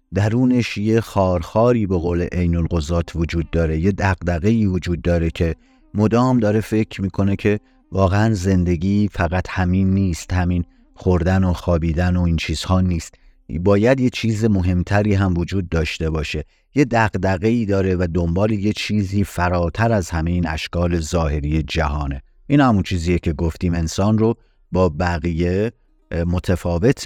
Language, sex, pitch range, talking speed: Persian, male, 85-105 Hz, 135 wpm